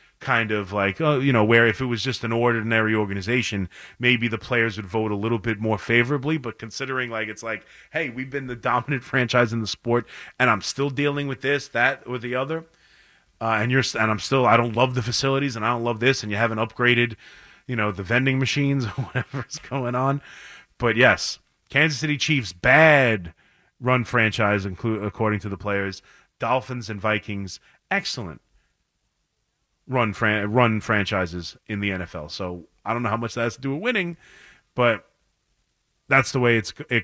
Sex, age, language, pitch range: male, 30-49, English, 110-135 Hz